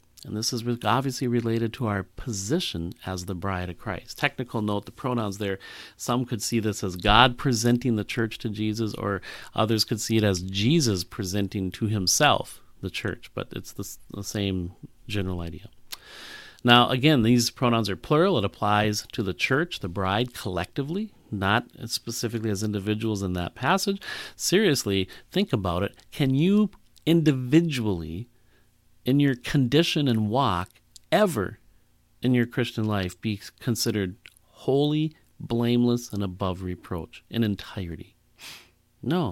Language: English